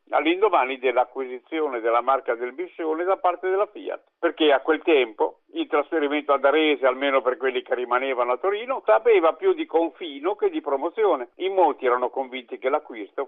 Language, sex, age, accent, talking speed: Italian, male, 50-69, native, 170 wpm